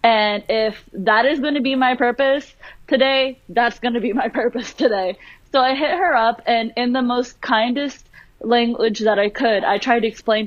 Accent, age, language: American, 20-39, English